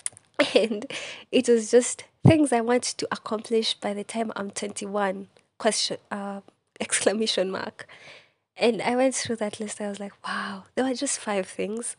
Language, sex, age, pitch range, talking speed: English, female, 20-39, 185-220 Hz, 165 wpm